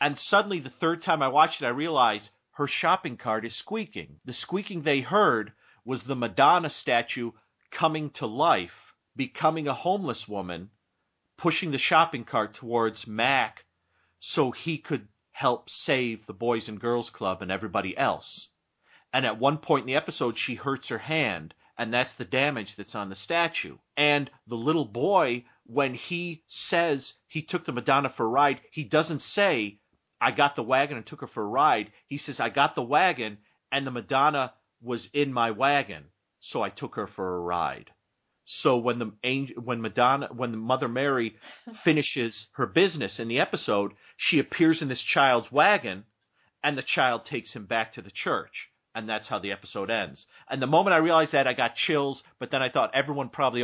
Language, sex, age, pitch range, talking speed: English, male, 40-59, 110-145 Hz, 185 wpm